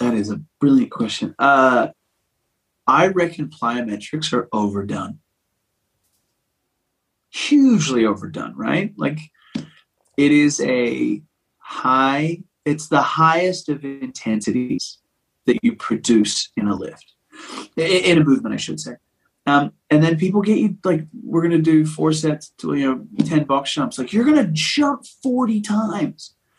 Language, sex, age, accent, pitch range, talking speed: English, male, 30-49, American, 120-180 Hz, 140 wpm